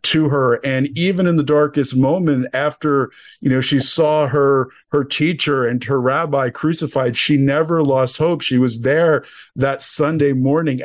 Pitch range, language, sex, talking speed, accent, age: 130-155 Hz, English, male, 165 wpm, American, 50-69